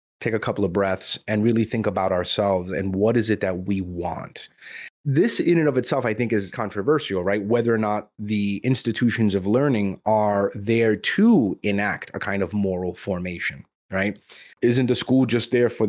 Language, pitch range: English, 100-130 Hz